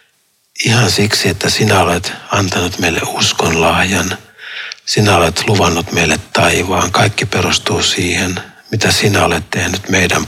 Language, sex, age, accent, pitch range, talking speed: Finnish, male, 60-79, native, 90-105 Hz, 130 wpm